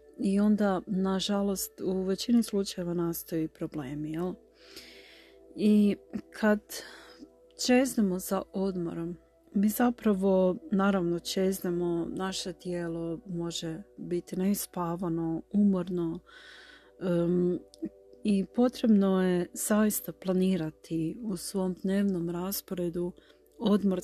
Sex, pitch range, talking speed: female, 175-205 Hz, 85 wpm